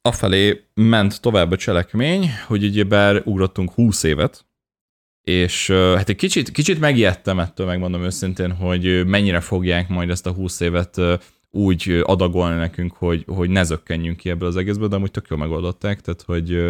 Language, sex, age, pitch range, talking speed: Hungarian, male, 20-39, 85-100 Hz, 160 wpm